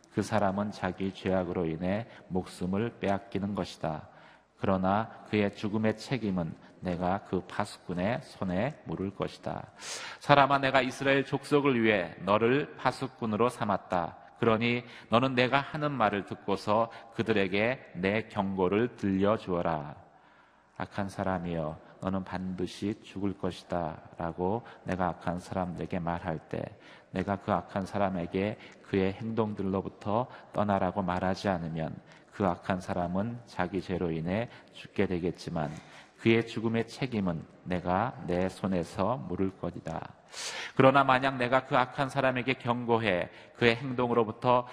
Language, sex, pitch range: Korean, male, 95-120 Hz